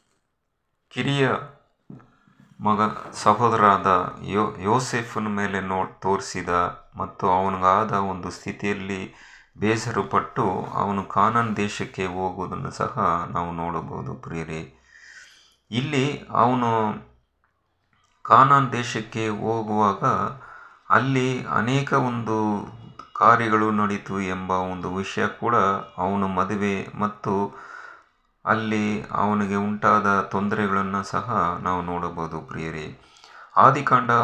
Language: Kannada